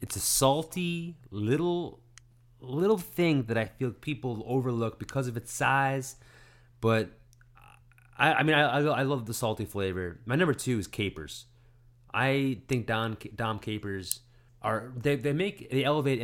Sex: male